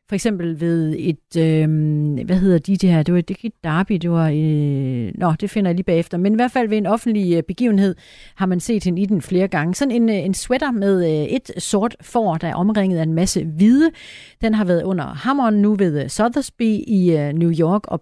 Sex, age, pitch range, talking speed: female, 40-59, 165-210 Hz, 210 wpm